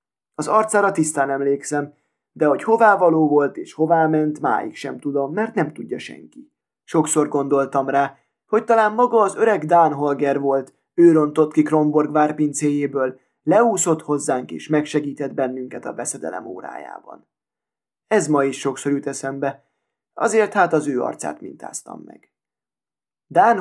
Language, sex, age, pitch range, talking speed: Hungarian, male, 20-39, 140-180 Hz, 140 wpm